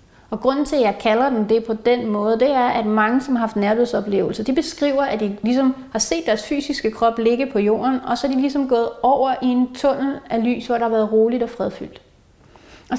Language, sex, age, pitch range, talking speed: Danish, female, 30-49, 215-265 Hz, 240 wpm